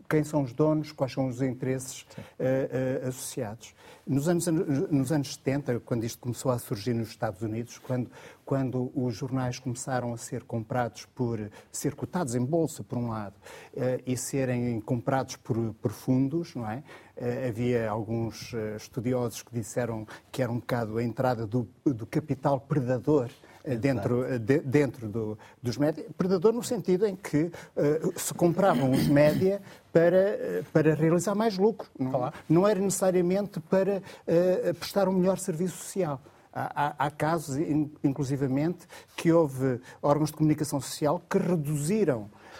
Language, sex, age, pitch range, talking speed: Portuguese, male, 60-79, 125-175 Hz, 155 wpm